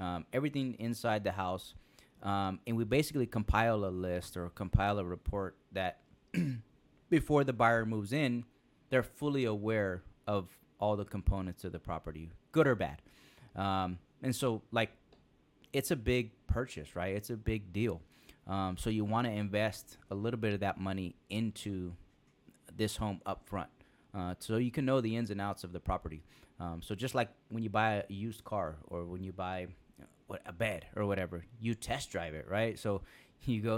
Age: 30-49